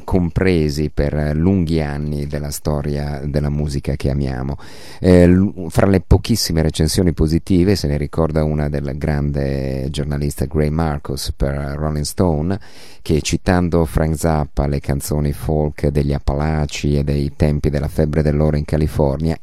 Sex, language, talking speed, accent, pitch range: male, Italian, 140 wpm, native, 70-85 Hz